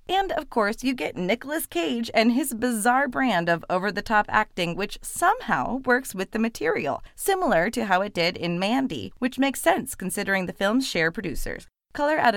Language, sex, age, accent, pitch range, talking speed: English, female, 30-49, American, 175-250 Hz, 180 wpm